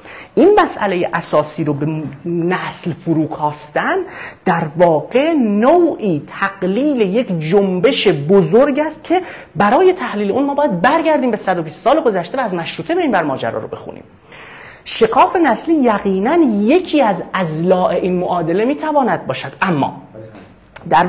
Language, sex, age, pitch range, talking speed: Persian, male, 30-49, 180-275 Hz, 130 wpm